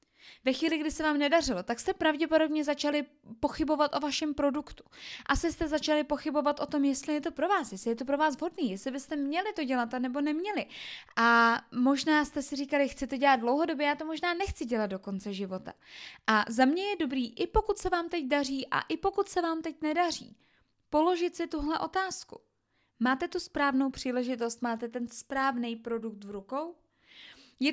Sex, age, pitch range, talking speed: female, 20-39, 260-320 Hz, 190 wpm